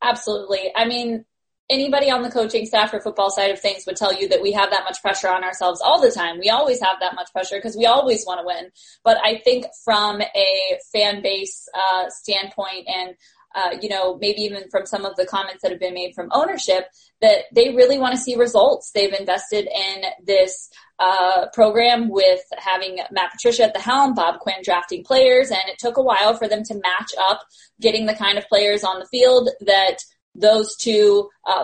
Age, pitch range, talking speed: 20-39, 190-230 Hz, 210 wpm